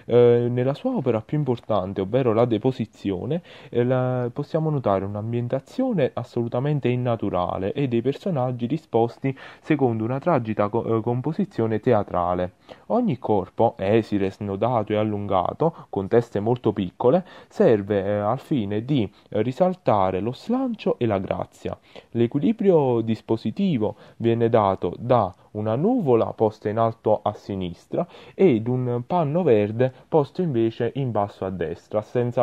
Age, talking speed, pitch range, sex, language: 30-49, 120 wpm, 105-130 Hz, male, Italian